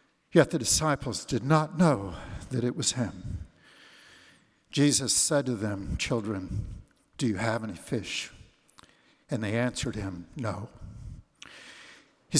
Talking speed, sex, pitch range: 125 wpm, male, 115-145 Hz